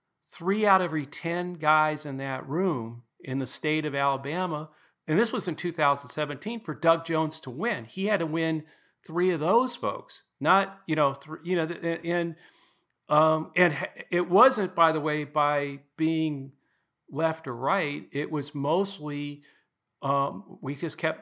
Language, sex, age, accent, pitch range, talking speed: English, male, 50-69, American, 125-155 Hz, 165 wpm